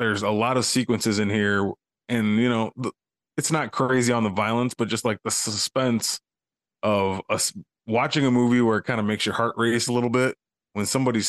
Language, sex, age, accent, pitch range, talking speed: English, male, 20-39, American, 100-115 Hz, 205 wpm